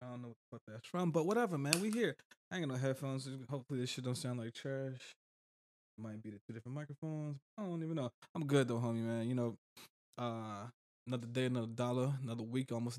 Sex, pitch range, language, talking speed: male, 115-140 Hz, English, 235 wpm